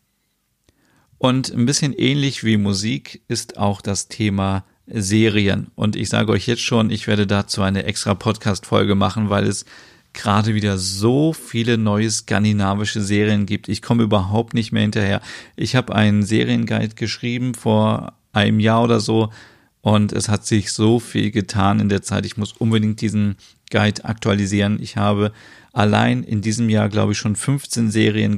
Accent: German